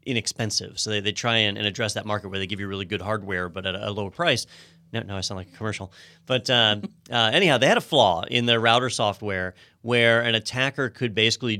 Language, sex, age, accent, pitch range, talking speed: English, male, 30-49, American, 100-130 Hz, 245 wpm